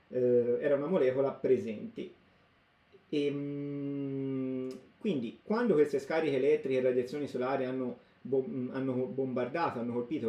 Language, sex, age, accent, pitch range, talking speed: Italian, male, 30-49, native, 120-145 Hz, 100 wpm